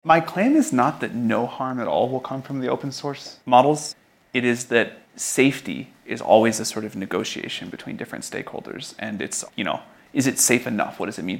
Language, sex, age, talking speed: English, male, 30-49, 215 wpm